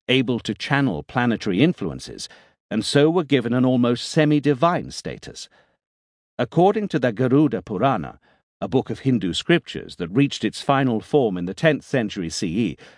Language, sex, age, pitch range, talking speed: English, male, 50-69, 105-145 Hz, 155 wpm